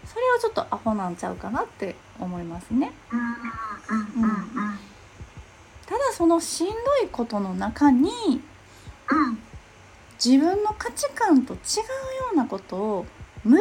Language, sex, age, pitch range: Japanese, female, 30-49, 205-305 Hz